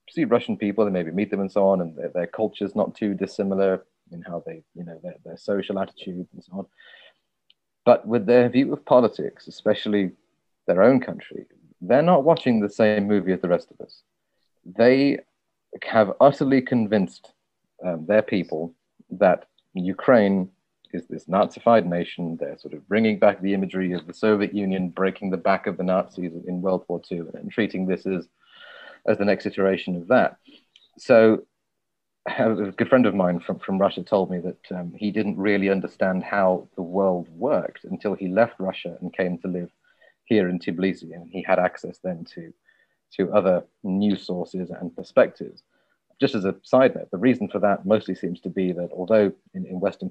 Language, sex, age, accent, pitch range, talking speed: English, male, 30-49, British, 90-105 Hz, 190 wpm